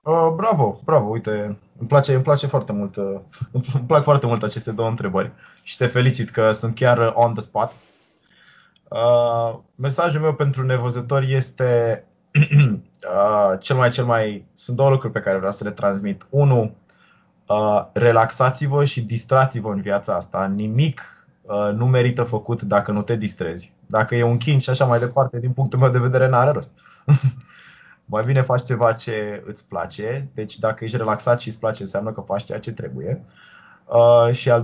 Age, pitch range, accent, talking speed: 20-39, 110-135 Hz, native, 165 wpm